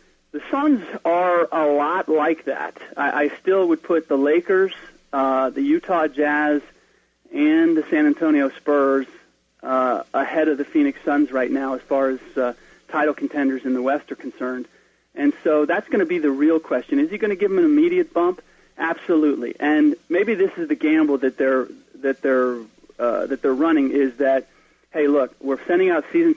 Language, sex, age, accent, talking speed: English, male, 40-59, American, 190 wpm